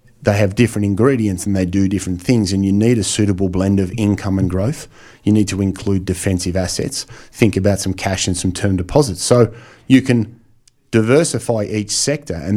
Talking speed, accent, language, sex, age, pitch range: 190 wpm, Australian, English, male, 30-49, 95-120 Hz